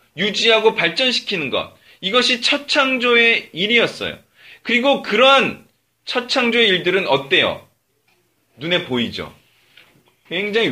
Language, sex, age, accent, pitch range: Korean, male, 30-49, native, 170-235 Hz